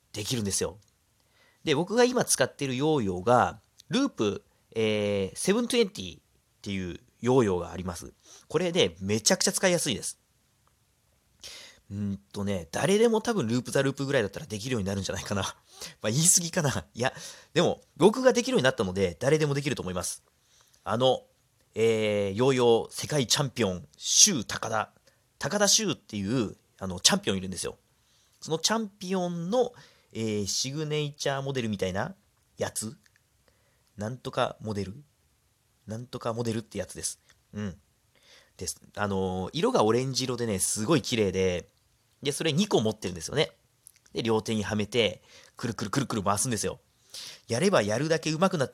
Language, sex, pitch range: Japanese, male, 105-155 Hz